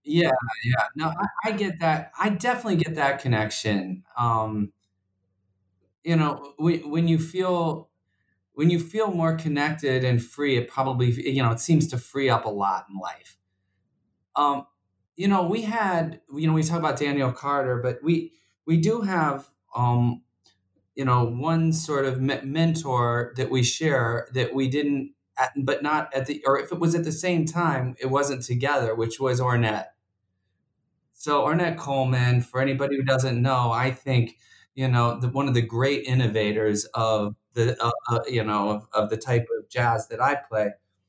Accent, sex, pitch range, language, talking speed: American, male, 115-155 Hz, English, 175 wpm